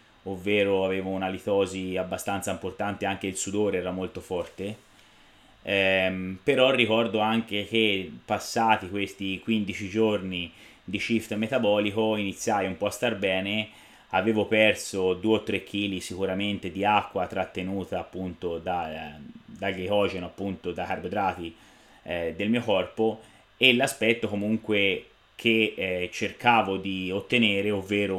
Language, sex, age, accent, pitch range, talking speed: Italian, male, 30-49, native, 95-110 Hz, 130 wpm